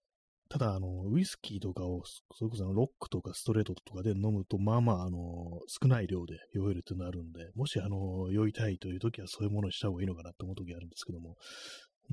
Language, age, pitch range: Japanese, 30-49, 90-120 Hz